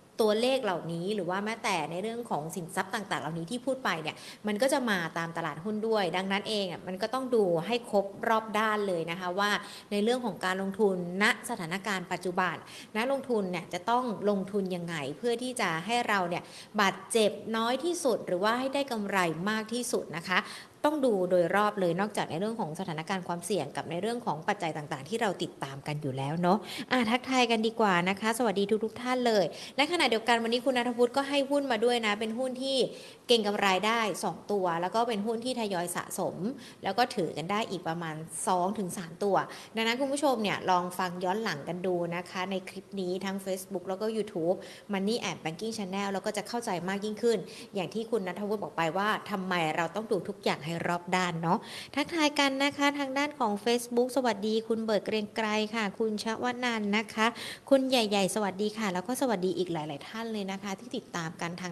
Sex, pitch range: female, 180-230 Hz